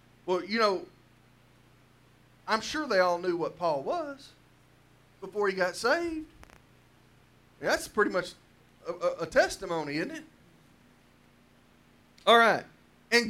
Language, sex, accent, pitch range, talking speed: English, male, American, 175-245 Hz, 115 wpm